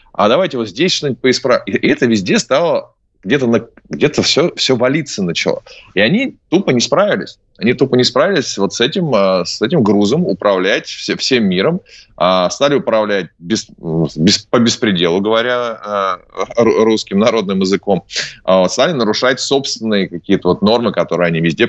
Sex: male